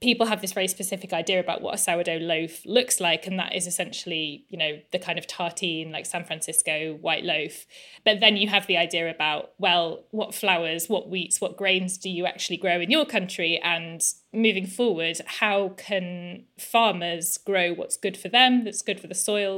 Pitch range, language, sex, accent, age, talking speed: 170-210 Hz, English, female, British, 20-39, 200 wpm